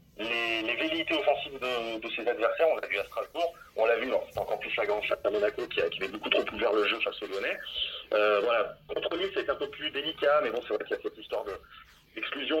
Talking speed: 260 wpm